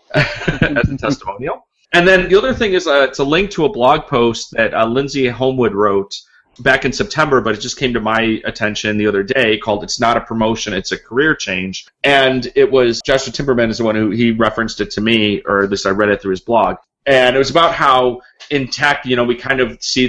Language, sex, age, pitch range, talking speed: English, male, 30-49, 100-125 Hz, 235 wpm